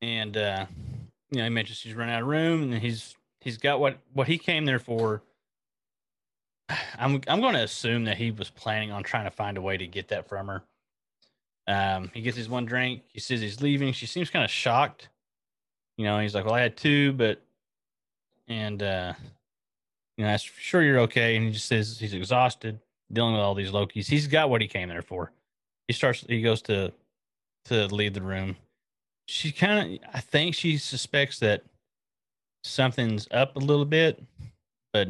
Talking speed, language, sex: 195 wpm, English, male